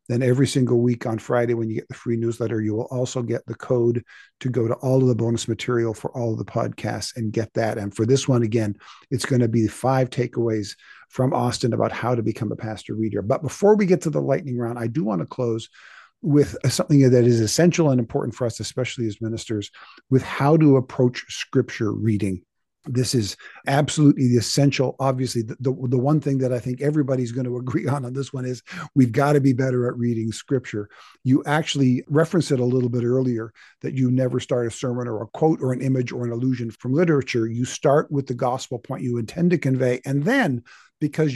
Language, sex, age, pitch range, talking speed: English, male, 50-69, 115-140 Hz, 225 wpm